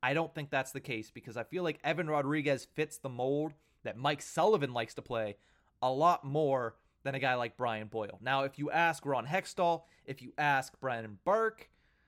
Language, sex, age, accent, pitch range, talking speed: English, male, 30-49, American, 130-170 Hz, 205 wpm